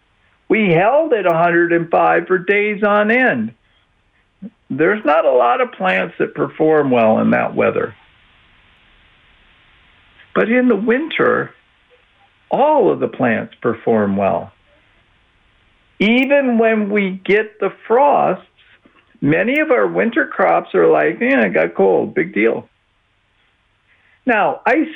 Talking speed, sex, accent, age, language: 125 wpm, male, American, 50-69, English